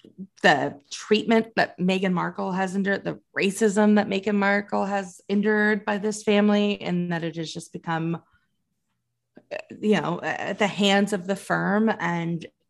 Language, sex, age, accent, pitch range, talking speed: English, female, 30-49, American, 170-220 Hz, 150 wpm